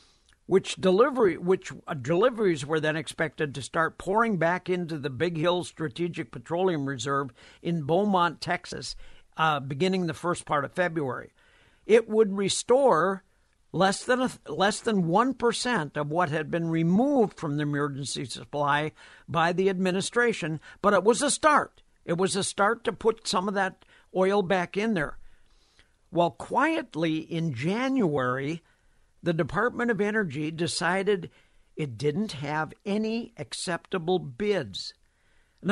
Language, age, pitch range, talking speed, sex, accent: English, 60-79, 155-200 Hz, 140 wpm, male, American